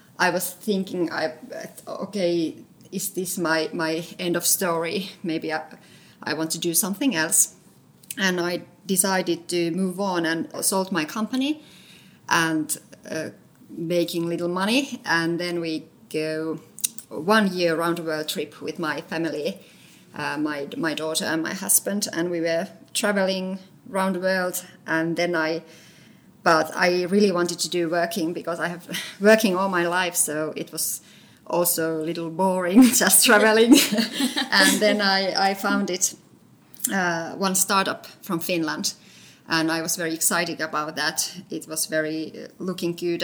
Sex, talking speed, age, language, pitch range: female, 155 wpm, 30-49, English, 165-195 Hz